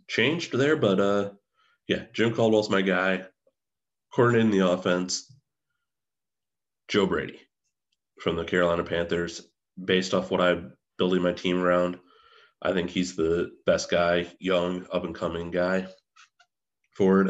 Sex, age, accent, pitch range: male, 30-49, American, 85-95 Hz